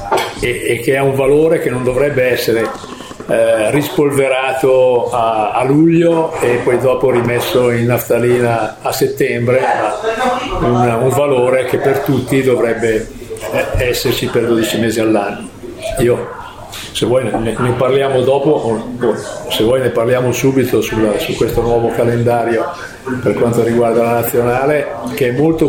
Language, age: Italian, 50-69